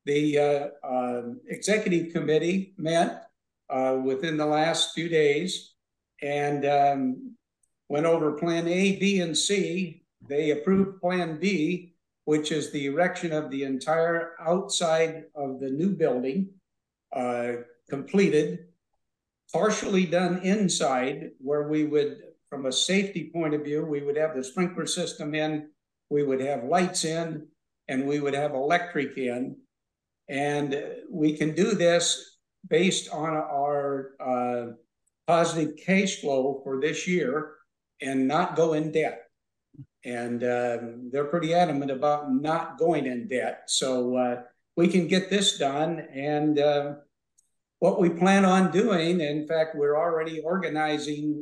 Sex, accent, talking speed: male, American, 140 wpm